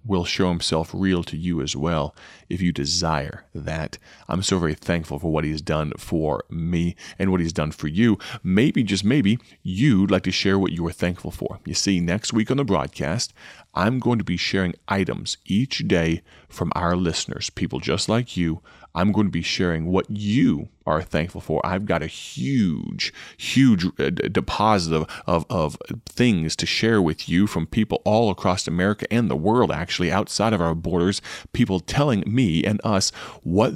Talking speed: 185 wpm